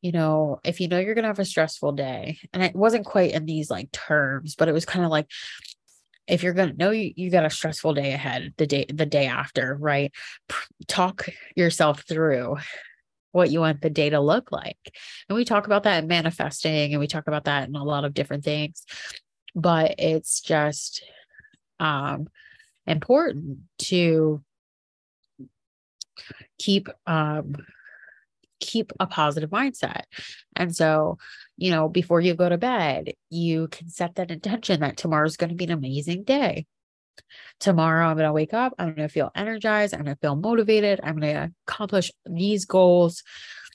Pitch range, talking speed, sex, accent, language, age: 150-185 Hz, 175 wpm, female, American, English, 20-39